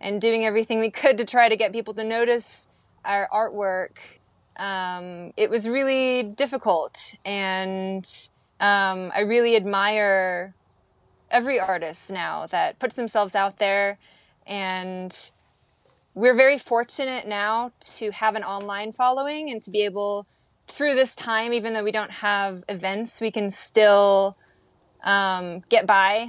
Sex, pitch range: female, 200-240 Hz